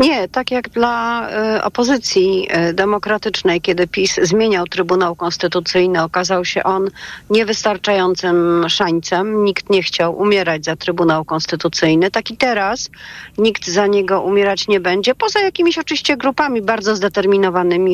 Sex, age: female, 40-59